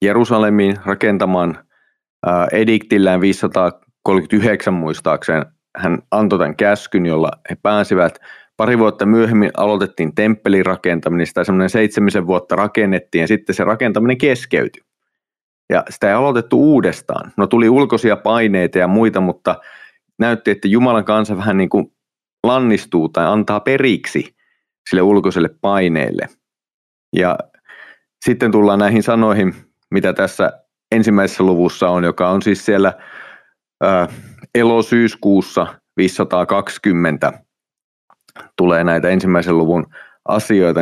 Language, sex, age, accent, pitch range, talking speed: Finnish, male, 30-49, native, 90-110 Hz, 110 wpm